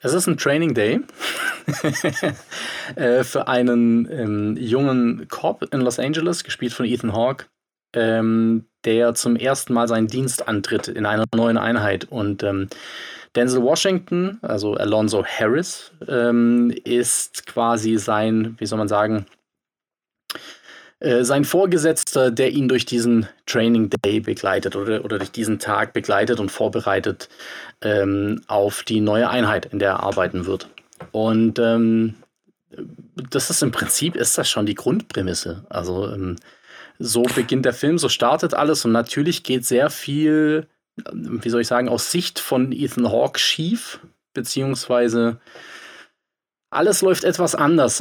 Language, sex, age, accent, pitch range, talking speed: German, male, 20-39, German, 110-130 Hz, 140 wpm